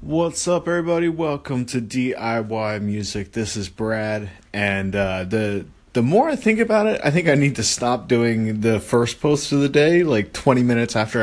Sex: male